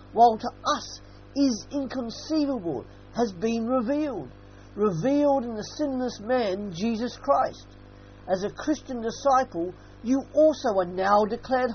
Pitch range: 165-255 Hz